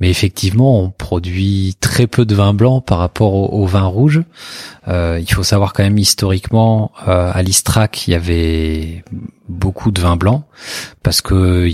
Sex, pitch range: male, 90-110 Hz